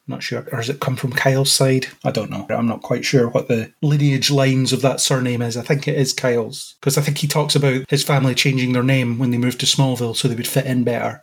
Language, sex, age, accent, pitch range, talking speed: English, male, 30-49, British, 130-150 Hz, 275 wpm